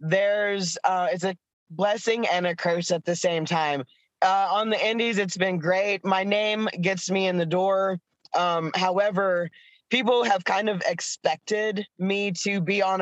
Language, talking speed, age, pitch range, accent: English, 175 wpm, 20-39, 170-195 Hz, American